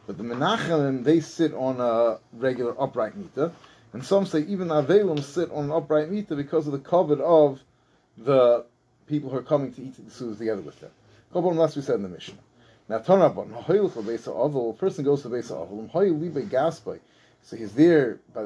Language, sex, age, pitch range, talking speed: English, male, 30-49, 130-170 Hz, 215 wpm